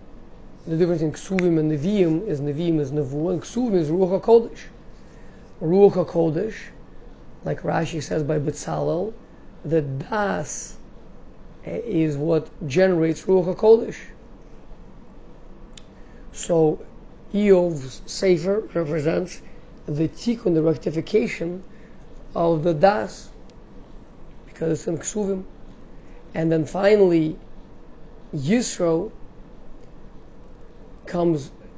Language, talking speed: English, 95 wpm